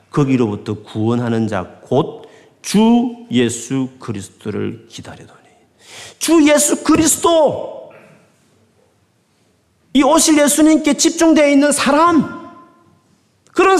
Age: 40-59